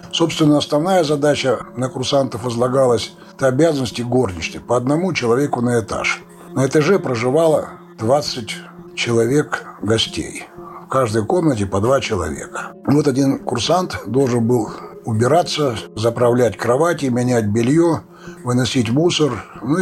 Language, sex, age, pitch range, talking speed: Russian, male, 60-79, 115-155 Hz, 115 wpm